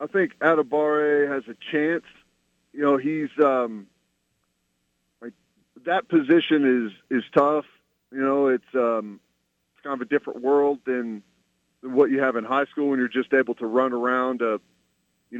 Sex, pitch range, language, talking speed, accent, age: male, 110-150 Hz, English, 170 wpm, American, 40-59